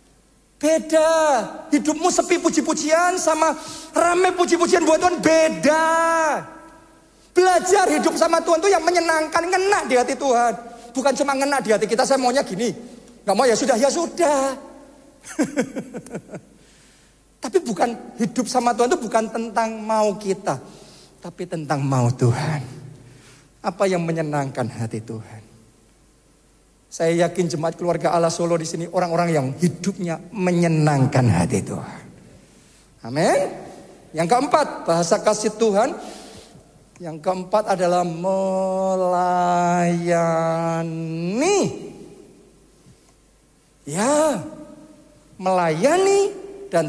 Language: Indonesian